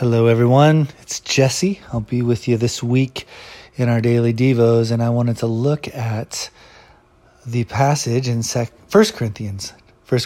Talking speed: 170 wpm